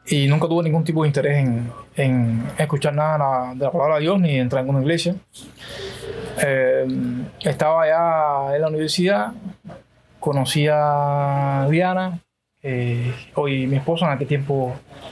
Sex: male